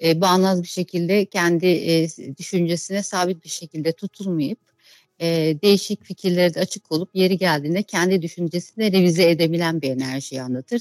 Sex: female